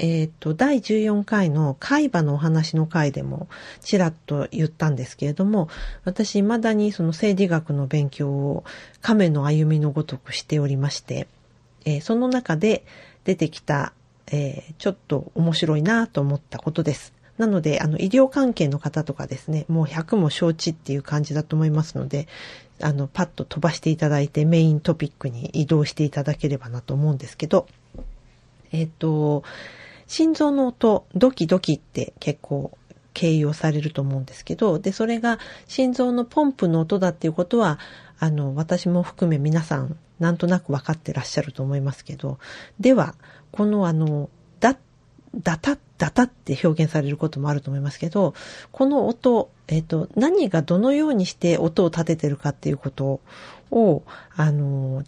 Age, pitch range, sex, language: 40-59, 145-185 Hz, female, Japanese